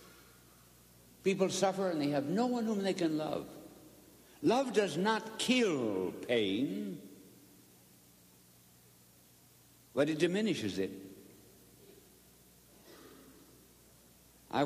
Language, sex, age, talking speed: English, male, 60-79, 85 wpm